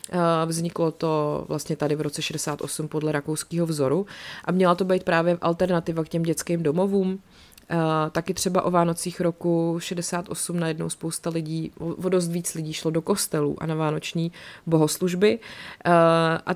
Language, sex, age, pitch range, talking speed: Czech, female, 30-49, 155-180 Hz, 155 wpm